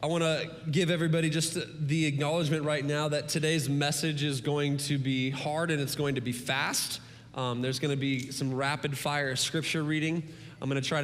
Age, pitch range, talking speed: 20-39, 135-155 Hz, 190 wpm